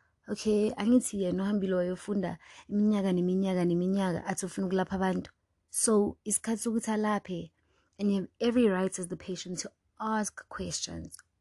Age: 20-39